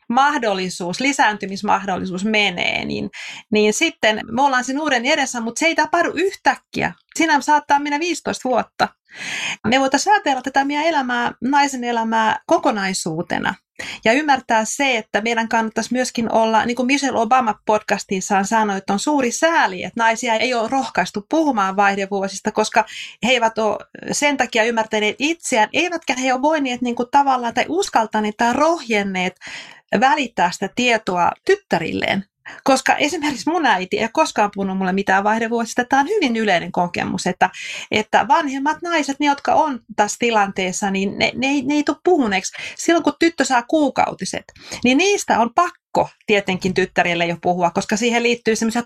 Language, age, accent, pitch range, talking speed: English, 30-49, Finnish, 210-285 Hz, 150 wpm